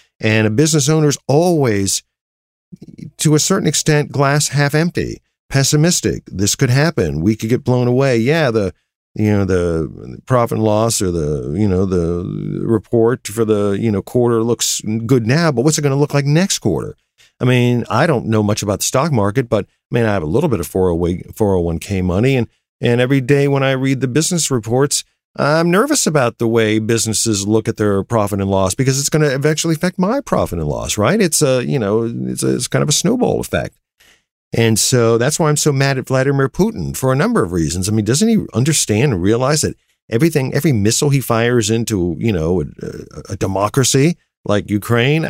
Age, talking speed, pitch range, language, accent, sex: 50-69, 205 wpm, 110-145 Hz, English, American, male